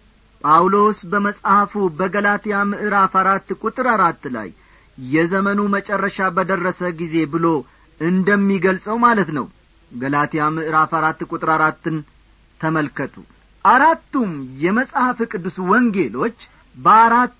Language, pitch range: Amharic, 165-235 Hz